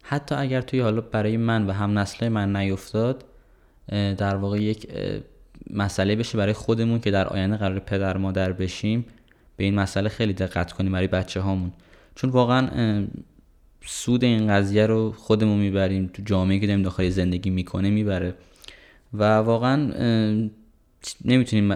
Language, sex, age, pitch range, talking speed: Persian, male, 20-39, 95-115 Hz, 145 wpm